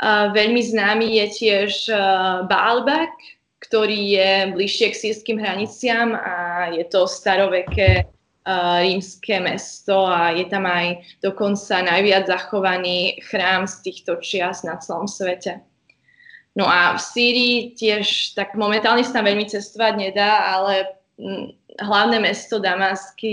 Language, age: Slovak, 20-39